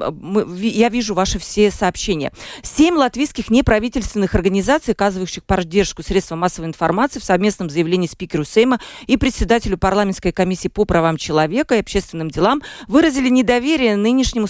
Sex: female